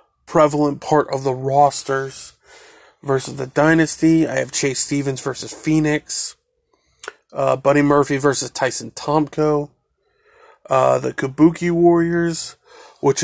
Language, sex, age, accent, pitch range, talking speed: English, male, 30-49, American, 135-150 Hz, 115 wpm